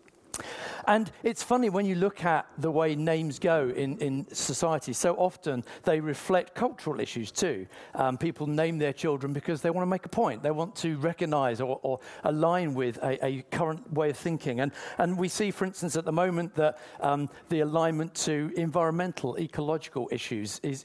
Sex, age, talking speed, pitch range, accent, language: male, 50-69, 185 wpm, 140-180 Hz, British, English